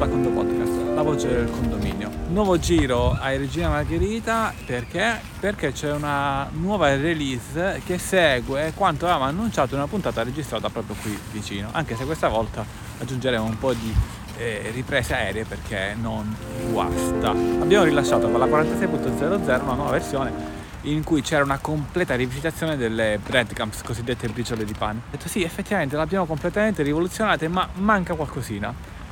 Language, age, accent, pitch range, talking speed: Italian, 30-49, native, 115-170 Hz, 150 wpm